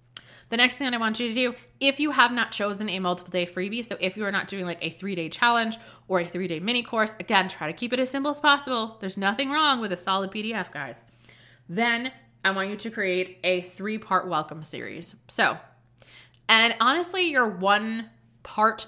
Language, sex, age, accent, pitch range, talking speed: English, female, 20-39, American, 170-220 Hz, 215 wpm